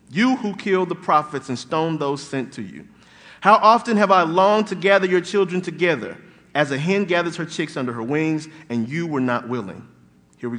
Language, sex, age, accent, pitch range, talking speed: English, male, 40-59, American, 165-225 Hz, 210 wpm